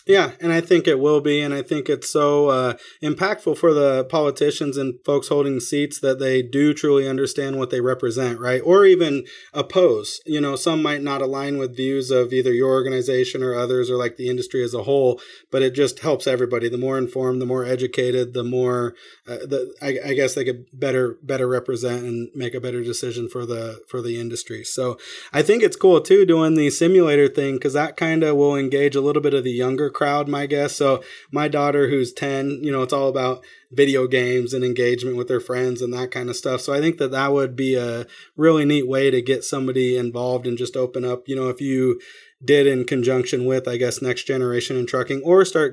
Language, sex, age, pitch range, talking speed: English, male, 30-49, 125-140 Hz, 220 wpm